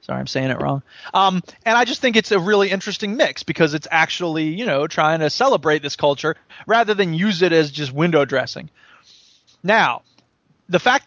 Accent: American